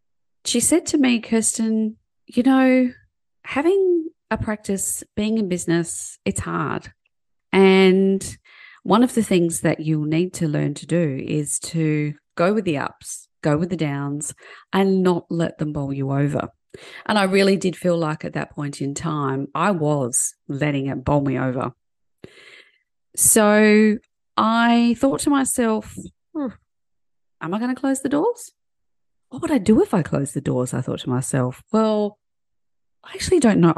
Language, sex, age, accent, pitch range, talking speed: English, female, 30-49, Australian, 145-220 Hz, 165 wpm